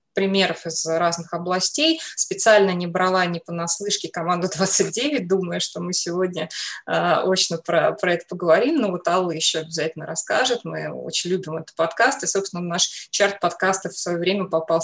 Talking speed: 165 wpm